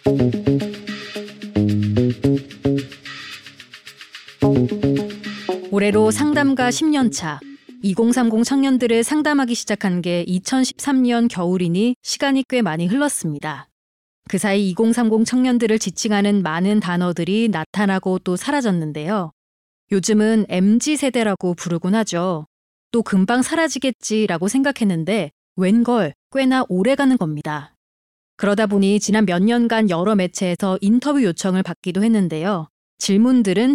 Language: Korean